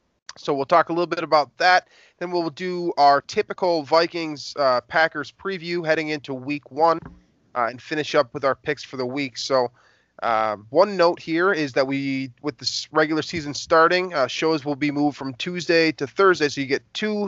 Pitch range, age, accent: 130-165 Hz, 20-39, American